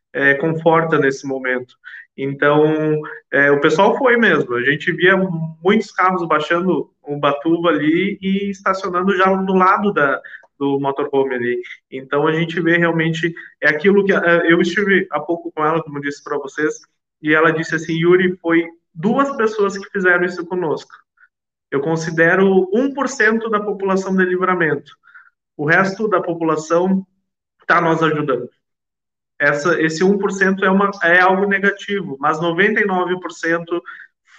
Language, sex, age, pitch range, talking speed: Portuguese, male, 20-39, 145-185 Hz, 145 wpm